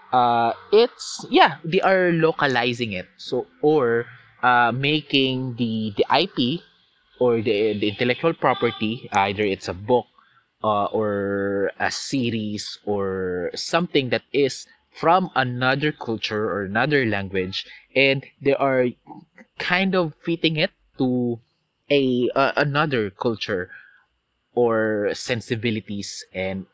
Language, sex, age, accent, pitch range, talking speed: Filipino, male, 20-39, native, 110-150 Hz, 115 wpm